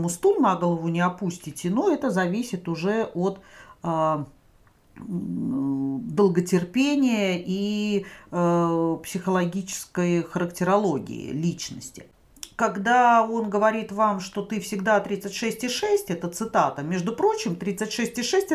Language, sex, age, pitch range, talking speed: Russian, female, 40-59, 175-230 Hz, 90 wpm